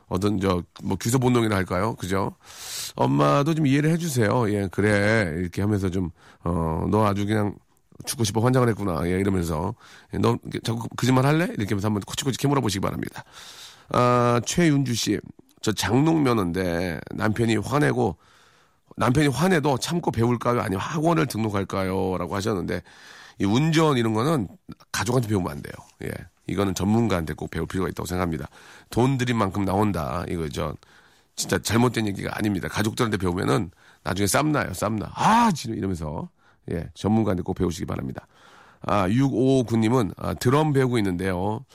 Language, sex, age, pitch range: Korean, male, 40-59, 95-130 Hz